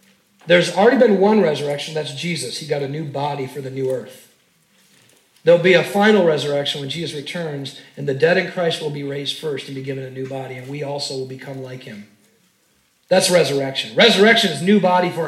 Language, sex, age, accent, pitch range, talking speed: English, male, 40-59, American, 175-240 Hz, 210 wpm